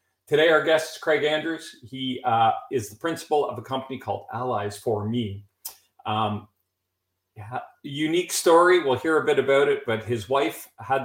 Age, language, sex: 40-59, English, male